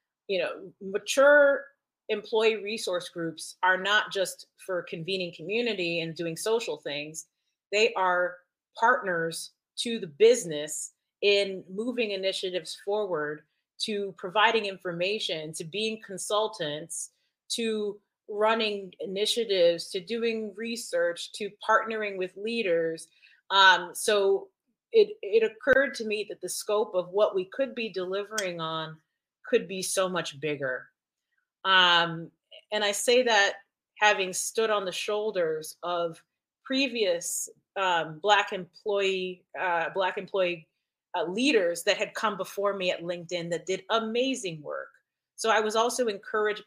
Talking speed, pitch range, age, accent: 130 wpm, 175-220 Hz, 30-49, American